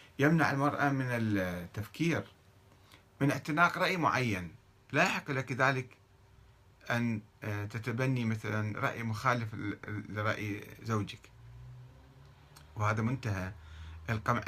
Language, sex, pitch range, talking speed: Arabic, male, 100-120 Hz, 90 wpm